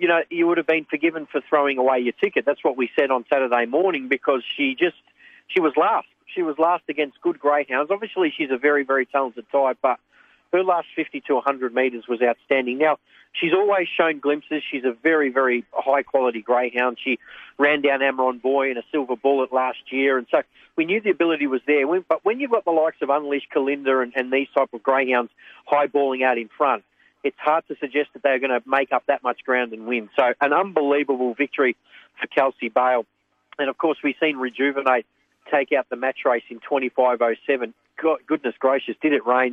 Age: 40-59